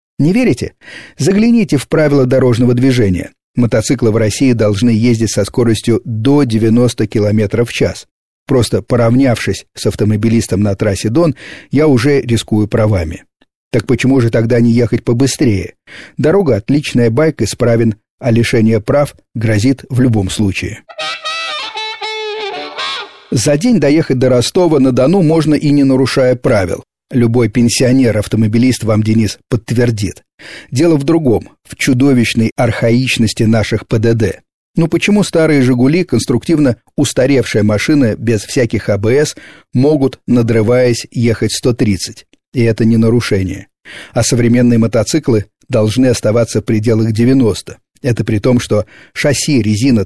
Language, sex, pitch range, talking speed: Russian, male, 110-135 Hz, 125 wpm